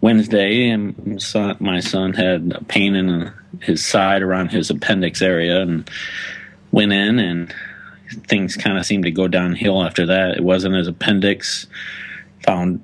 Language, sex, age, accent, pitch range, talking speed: English, male, 30-49, American, 85-100 Hz, 150 wpm